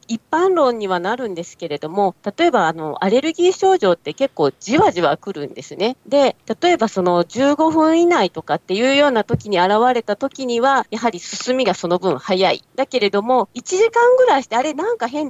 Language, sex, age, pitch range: Japanese, female, 40-59, 185-285 Hz